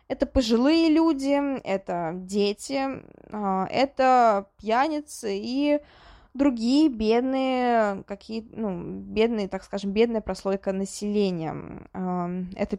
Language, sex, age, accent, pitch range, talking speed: Russian, female, 20-39, native, 195-260 Hz, 90 wpm